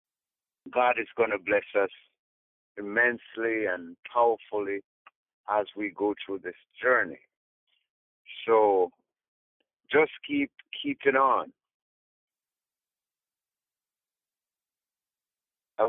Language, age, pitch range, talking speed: English, 50-69, 100-145 Hz, 80 wpm